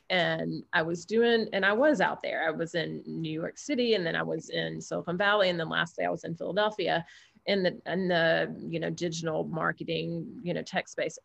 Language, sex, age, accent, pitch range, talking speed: English, female, 30-49, American, 165-215 Hz, 225 wpm